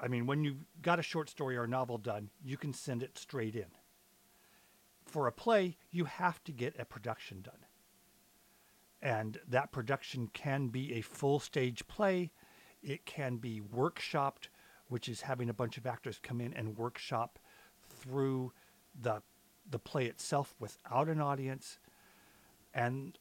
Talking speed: 155 wpm